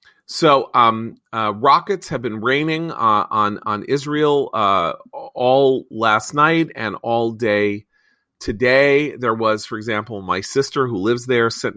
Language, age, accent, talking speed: English, 40-59, American, 150 wpm